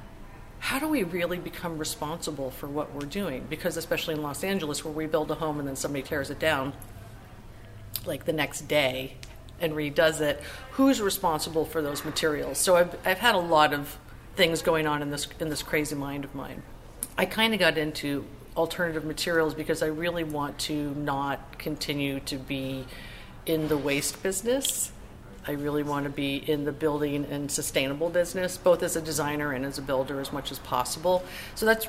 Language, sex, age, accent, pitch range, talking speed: English, female, 40-59, American, 140-165 Hz, 190 wpm